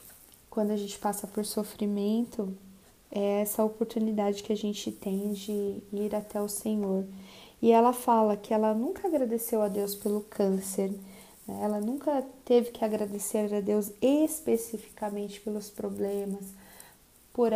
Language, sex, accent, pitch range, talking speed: Portuguese, female, Brazilian, 200-230 Hz, 140 wpm